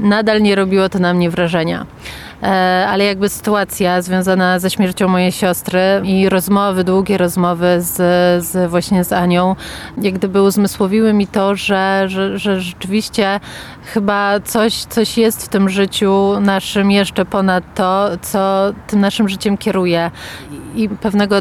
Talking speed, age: 135 wpm, 30-49